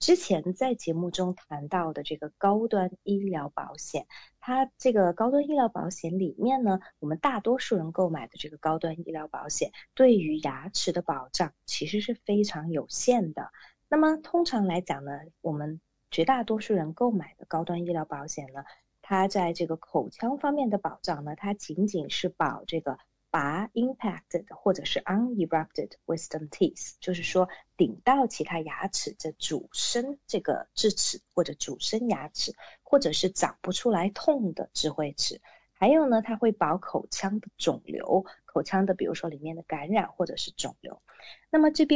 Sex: female